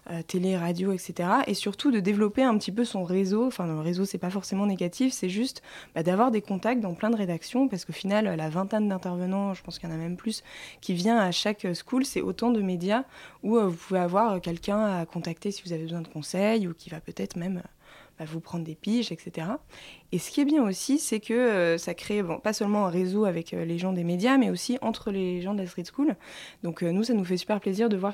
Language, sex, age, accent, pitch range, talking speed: French, female, 20-39, French, 175-220 Hz, 245 wpm